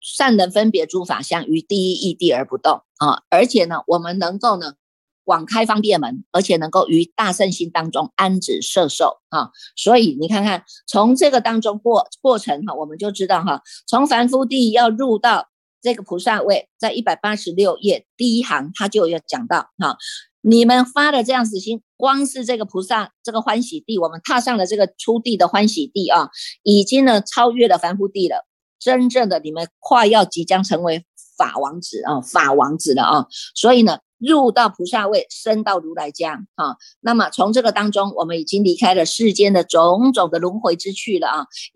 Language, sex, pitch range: Chinese, female, 180-240 Hz